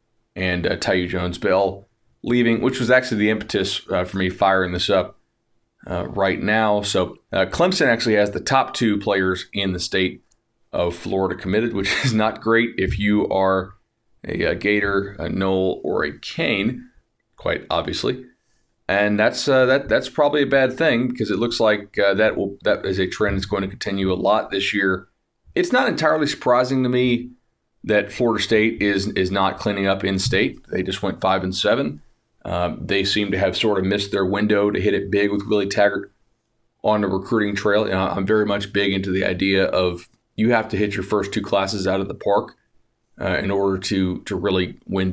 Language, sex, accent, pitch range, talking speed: English, male, American, 95-110 Hz, 200 wpm